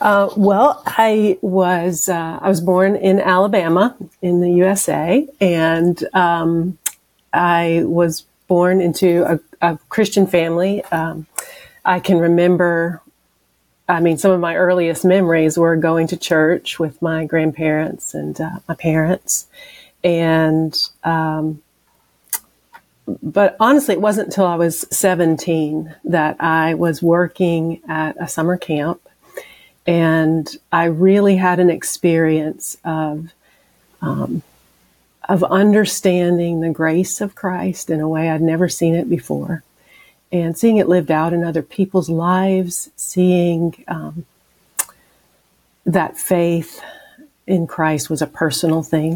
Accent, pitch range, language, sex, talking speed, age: American, 160-190 Hz, English, female, 125 wpm, 40-59